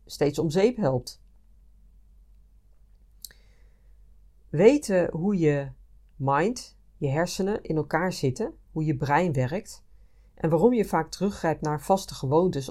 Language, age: Dutch, 40-59